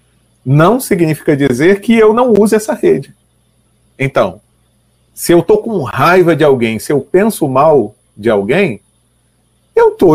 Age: 40-59